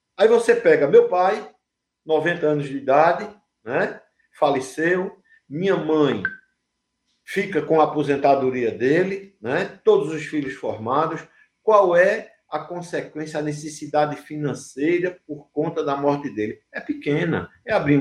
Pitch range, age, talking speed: 135-195 Hz, 50-69, 130 wpm